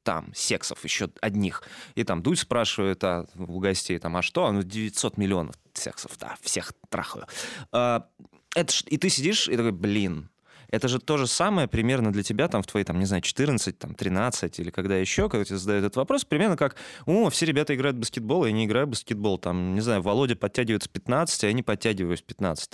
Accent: native